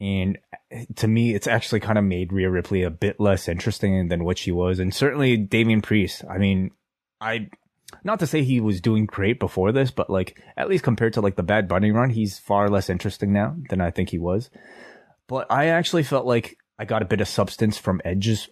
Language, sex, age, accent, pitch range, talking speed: English, male, 20-39, American, 95-115 Hz, 220 wpm